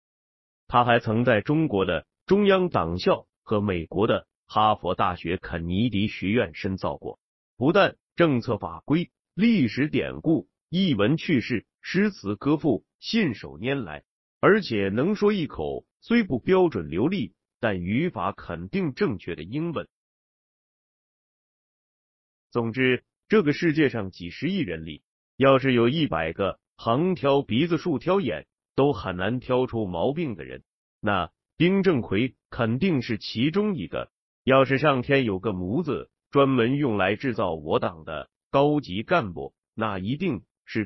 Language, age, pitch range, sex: Chinese, 30-49, 100-150 Hz, male